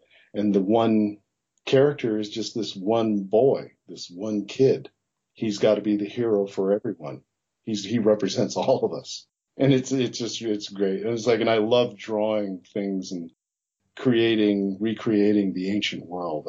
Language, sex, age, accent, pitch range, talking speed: English, male, 40-59, American, 100-130 Hz, 165 wpm